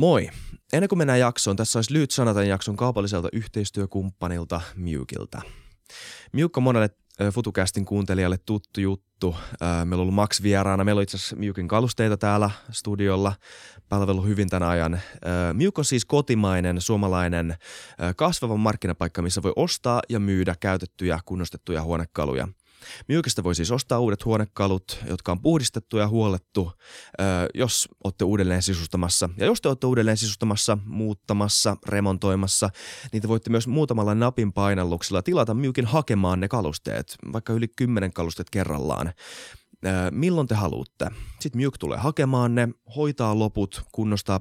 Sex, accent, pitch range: male, native, 90-115 Hz